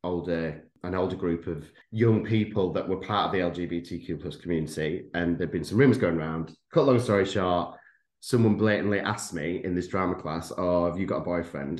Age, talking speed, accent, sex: 30-49, 210 wpm, British, male